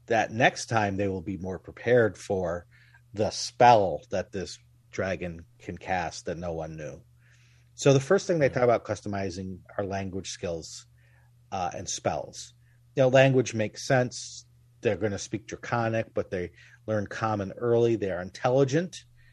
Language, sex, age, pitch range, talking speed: English, male, 40-59, 100-120 Hz, 160 wpm